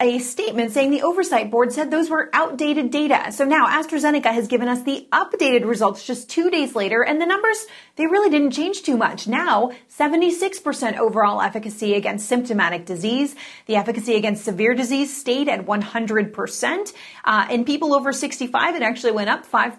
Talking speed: 175 wpm